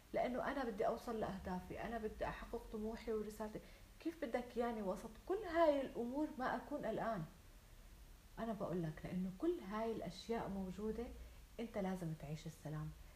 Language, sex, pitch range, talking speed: Arabic, female, 175-235 Hz, 145 wpm